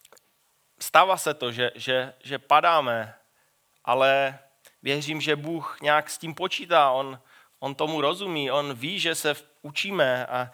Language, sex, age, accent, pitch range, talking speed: Czech, male, 30-49, native, 135-185 Hz, 150 wpm